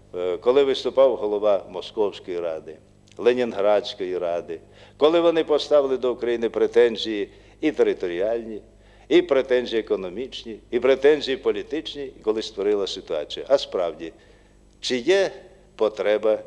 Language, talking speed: Russian, 105 wpm